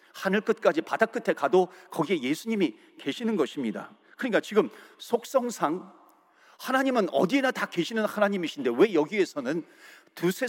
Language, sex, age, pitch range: Korean, male, 40-59, 190-240 Hz